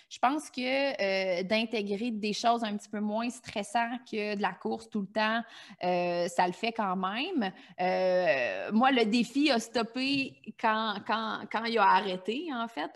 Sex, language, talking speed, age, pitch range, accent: female, French, 180 wpm, 30-49, 200-240 Hz, Canadian